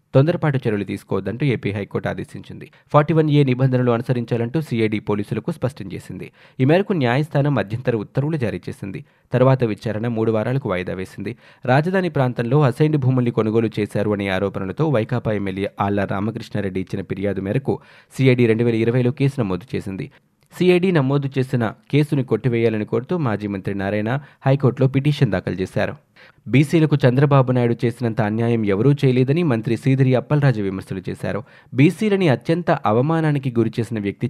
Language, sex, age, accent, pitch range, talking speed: Telugu, male, 20-39, native, 105-140 Hz, 140 wpm